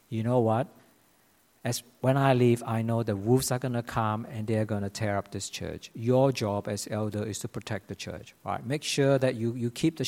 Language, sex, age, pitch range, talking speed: English, male, 50-69, 115-175 Hz, 240 wpm